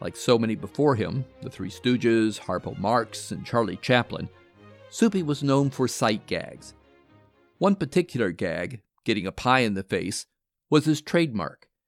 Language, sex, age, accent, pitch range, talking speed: English, male, 50-69, American, 110-140 Hz, 155 wpm